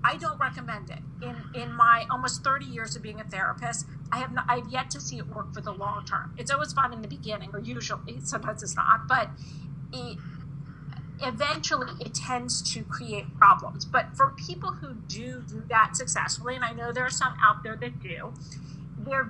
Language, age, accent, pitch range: English, 40-59, American, 145-235 Hz